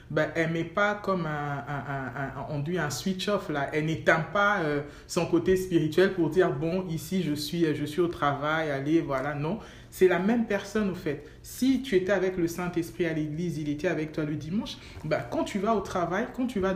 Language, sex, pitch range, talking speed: French, male, 150-185 Hz, 215 wpm